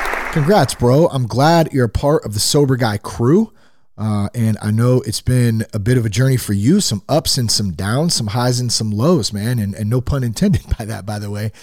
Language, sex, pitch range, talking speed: English, male, 105-135 Hz, 240 wpm